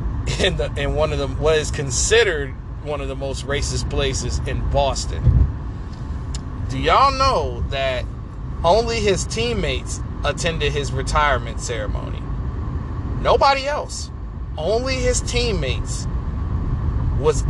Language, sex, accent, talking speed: English, male, American, 115 wpm